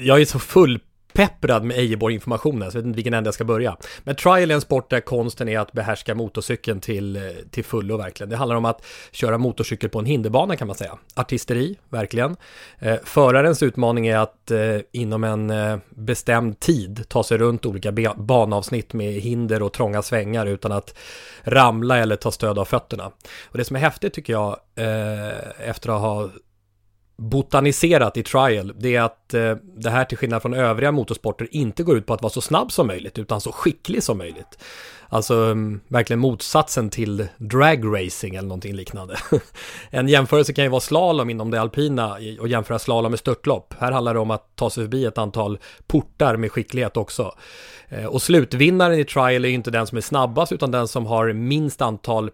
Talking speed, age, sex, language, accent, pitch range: 190 wpm, 30-49, male, English, Swedish, 110-130 Hz